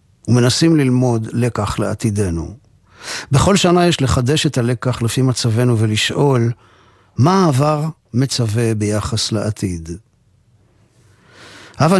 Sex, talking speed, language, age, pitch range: male, 95 wpm, Hebrew, 50-69, 110-135 Hz